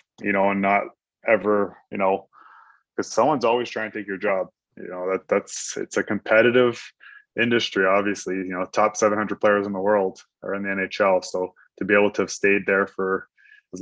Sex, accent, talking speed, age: male, Canadian, 200 wpm, 20-39